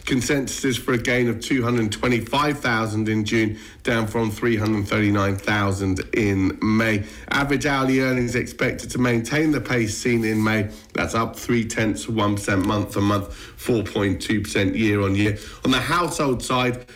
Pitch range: 110-130 Hz